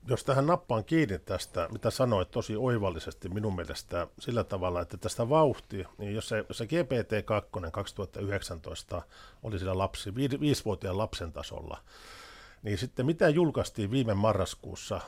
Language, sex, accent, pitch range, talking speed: English, male, Finnish, 95-125 Hz, 135 wpm